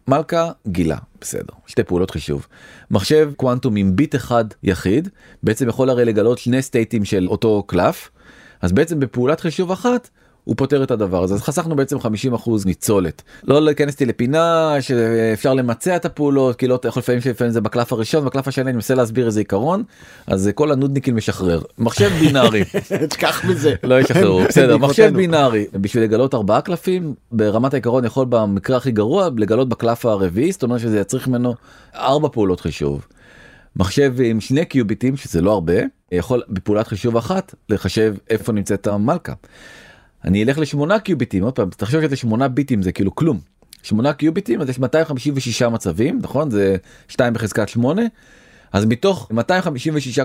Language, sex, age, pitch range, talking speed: Hebrew, male, 30-49, 110-140 Hz, 140 wpm